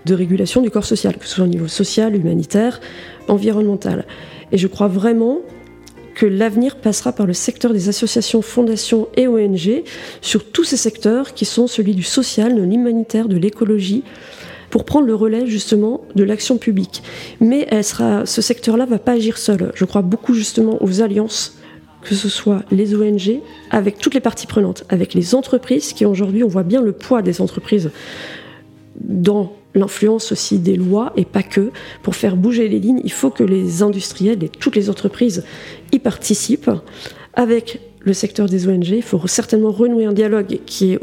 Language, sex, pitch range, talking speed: French, female, 195-230 Hz, 180 wpm